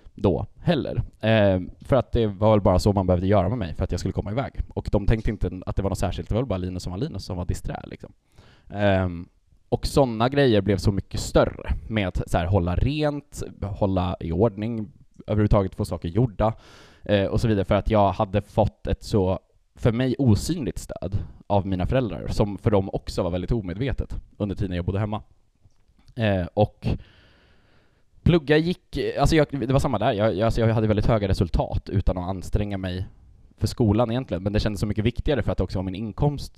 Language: Swedish